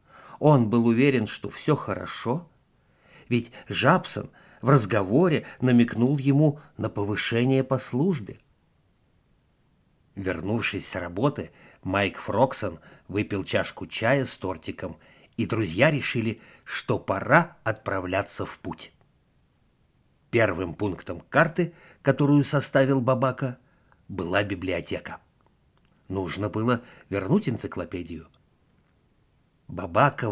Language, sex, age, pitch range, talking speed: Russian, male, 60-79, 95-130 Hz, 95 wpm